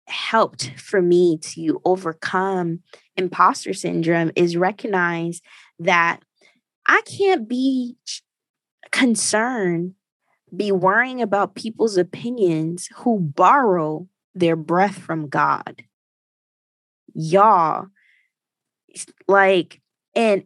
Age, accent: 20-39, American